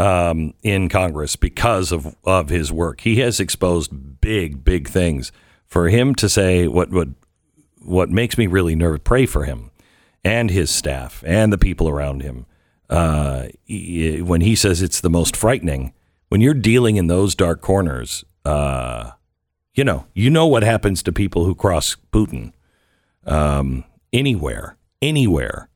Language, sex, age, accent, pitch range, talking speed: English, male, 50-69, American, 85-110 Hz, 155 wpm